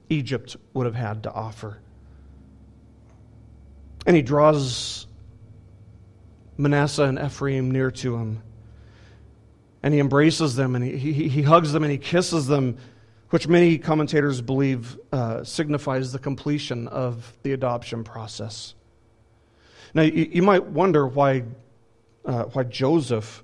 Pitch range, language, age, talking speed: 115-150 Hz, English, 40-59, 130 wpm